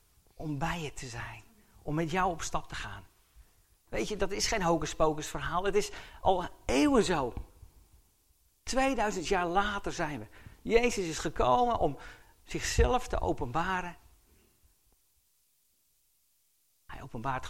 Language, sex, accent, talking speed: English, male, Dutch, 130 wpm